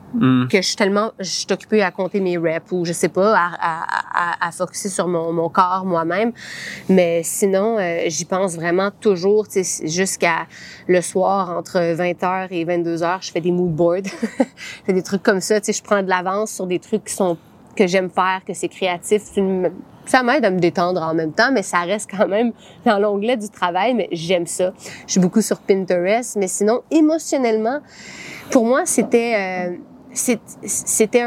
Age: 30-49